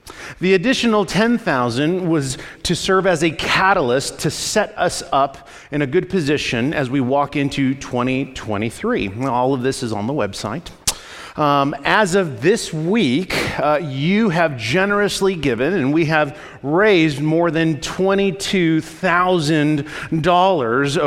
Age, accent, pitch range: 40-59, American, 145-195 Hz